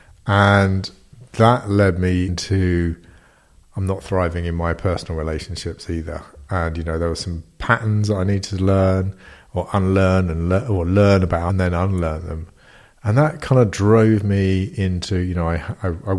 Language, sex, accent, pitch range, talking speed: English, male, British, 90-100 Hz, 180 wpm